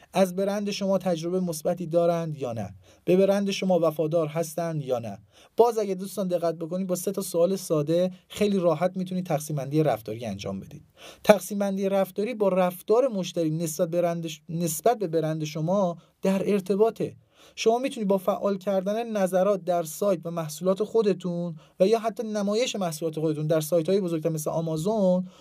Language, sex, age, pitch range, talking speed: Persian, male, 30-49, 165-210 Hz, 160 wpm